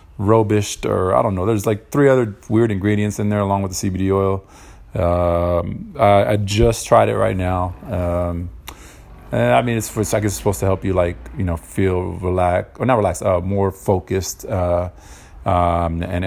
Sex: male